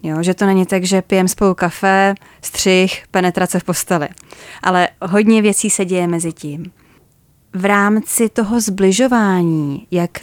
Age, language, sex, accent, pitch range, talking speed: 20-39, Czech, female, native, 170-210 Hz, 140 wpm